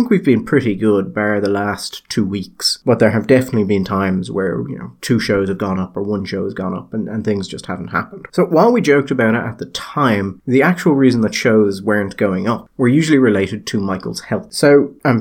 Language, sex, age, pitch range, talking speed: English, male, 30-49, 100-130 Hz, 235 wpm